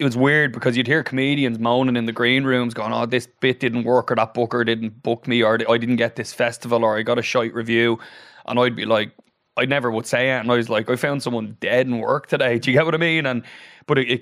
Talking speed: 280 wpm